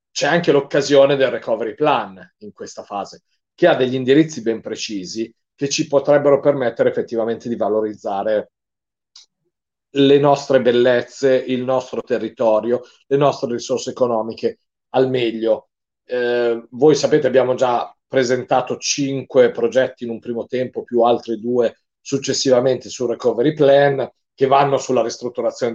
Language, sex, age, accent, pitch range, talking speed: Italian, male, 40-59, native, 120-145 Hz, 135 wpm